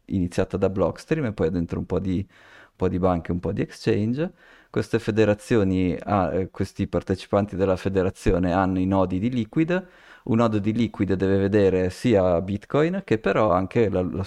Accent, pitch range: native, 90-115 Hz